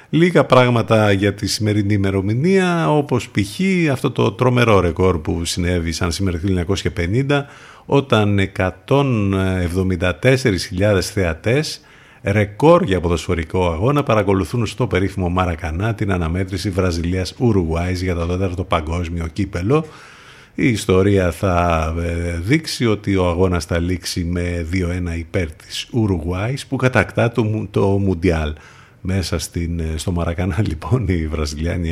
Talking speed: 120 wpm